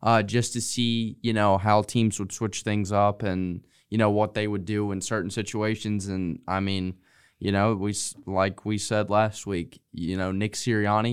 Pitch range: 95-110 Hz